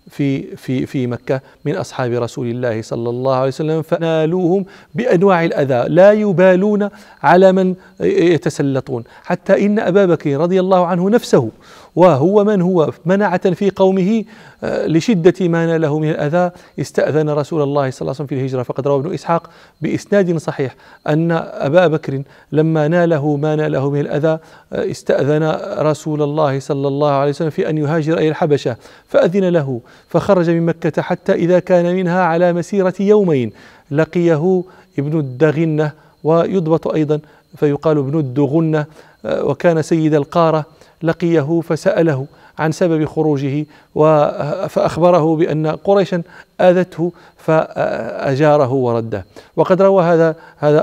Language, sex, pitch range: English, male, 145-175 Hz